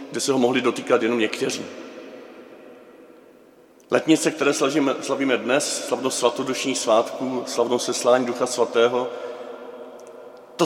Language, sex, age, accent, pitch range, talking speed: Czech, male, 40-59, native, 120-150 Hz, 115 wpm